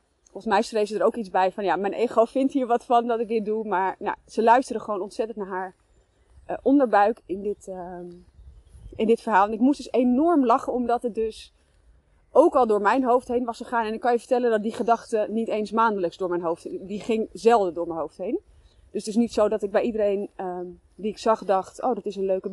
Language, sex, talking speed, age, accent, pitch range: Dutch, female, 250 wpm, 30-49, Dutch, 200-255 Hz